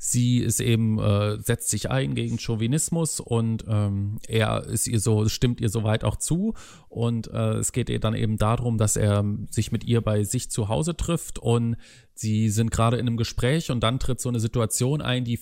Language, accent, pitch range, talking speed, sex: German, German, 110-130 Hz, 195 wpm, male